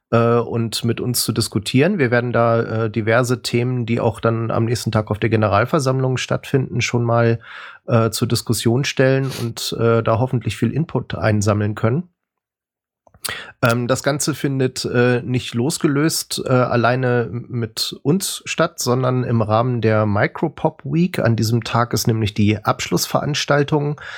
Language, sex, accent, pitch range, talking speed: German, male, German, 110-125 Hz, 135 wpm